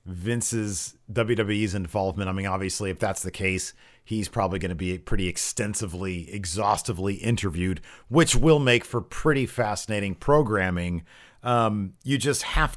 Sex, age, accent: male, 40-59, American